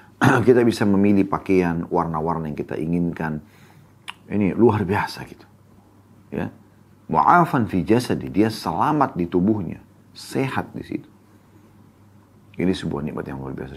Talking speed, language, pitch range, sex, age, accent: 120 wpm, Indonesian, 90-110 Hz, male, 40-59, native